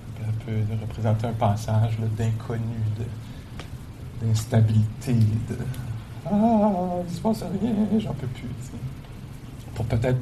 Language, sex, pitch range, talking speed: English, male, 110-125 Hz, 130 wpm